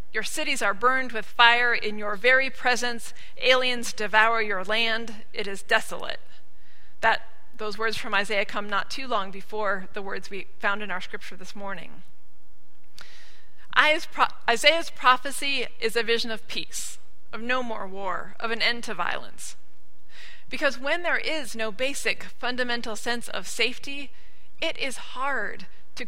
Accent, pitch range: American, 200-260 Hz